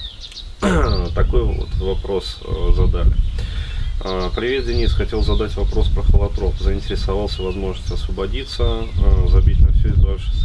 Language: Russian